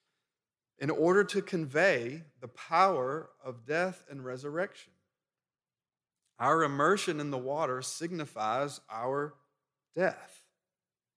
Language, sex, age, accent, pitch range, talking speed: English, male, 40-59, American, 120-165 Hz, 95 wpm